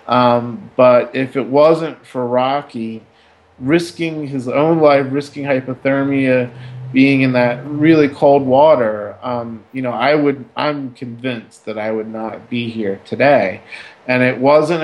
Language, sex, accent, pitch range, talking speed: English, male, American, 115-135 Hz, 140 wpm